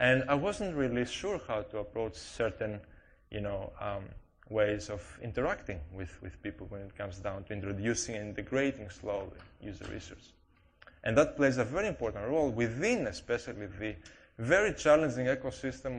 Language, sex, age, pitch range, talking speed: English, male, 20-39, 95-125 Hz, 150 wpm